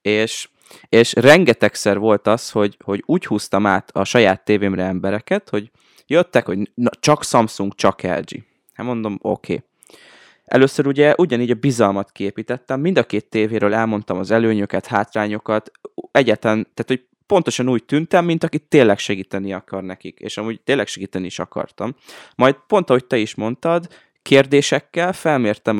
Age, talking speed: 20-39, 155 wpm